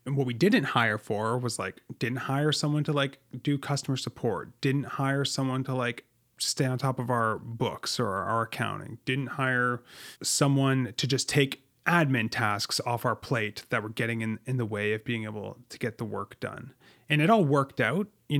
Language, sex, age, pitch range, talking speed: English, male, 30-49, 110-135 Hz, 200 wpm